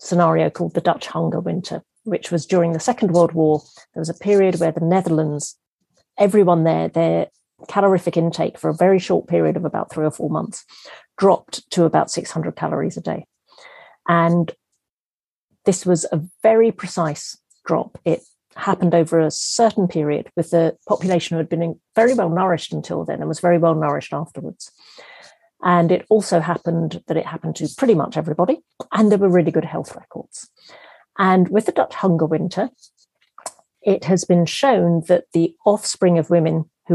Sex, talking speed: female, 175 wpm